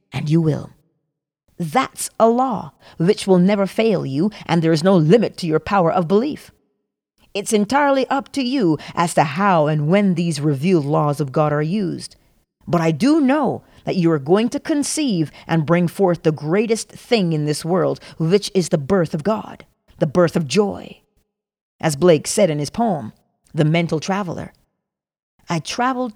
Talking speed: 180 wpm